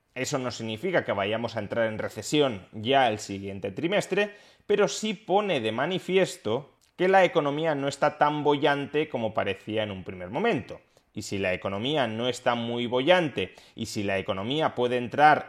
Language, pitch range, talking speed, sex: Spanish, 110-145 Hz, 175 wpm, male